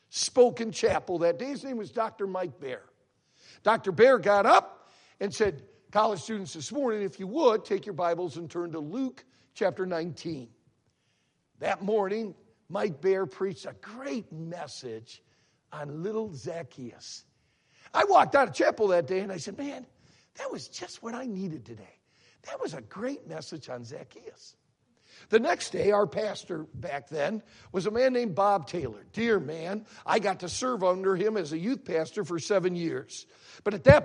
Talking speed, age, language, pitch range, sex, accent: 175 wpm, 60-79, English, 175-240 Hz, male, American